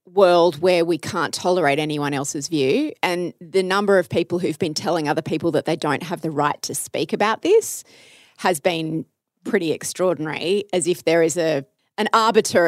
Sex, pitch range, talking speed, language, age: female, 170-220 Hz, 185 wpm, English, 30-49